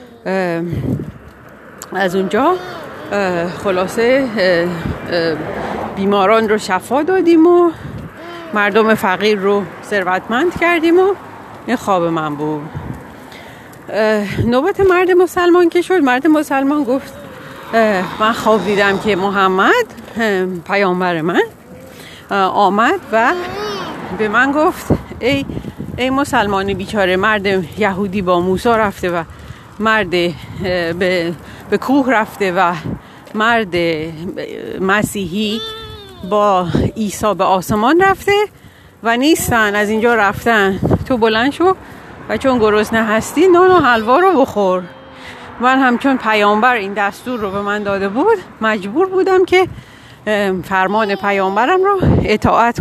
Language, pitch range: Persian, 190-265 Hz